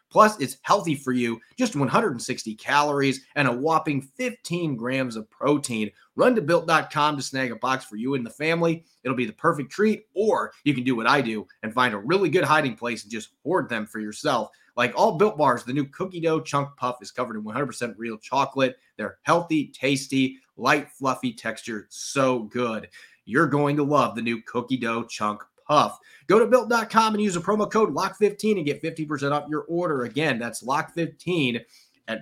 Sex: male